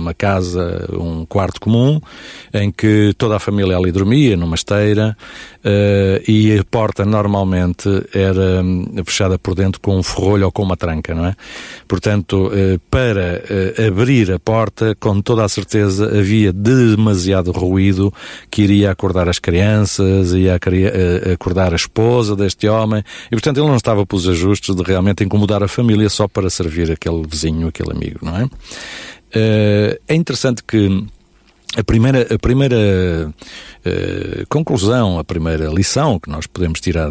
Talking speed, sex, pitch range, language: 145 wpm, male, 90-110 Hz, Portuguese